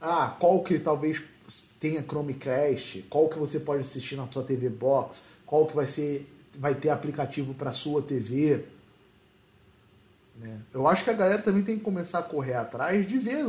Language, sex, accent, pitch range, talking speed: Portuguese, male, Brazilian, 130-200 Hz, 180 wpm